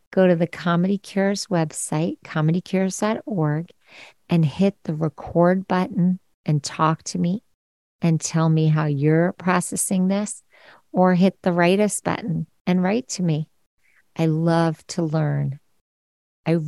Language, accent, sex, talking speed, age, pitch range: English, American, female, 135 wpm, 50-69, 150-180 Hz